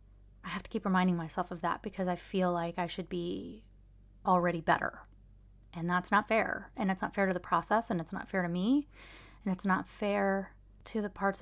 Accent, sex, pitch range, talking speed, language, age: American, female, 175-205 Hz, 215 wpm, English, 30-49